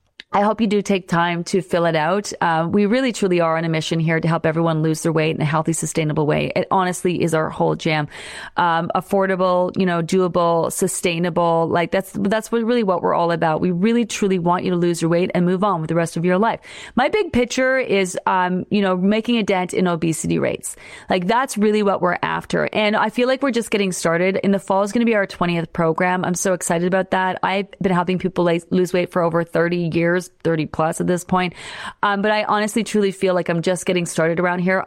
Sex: female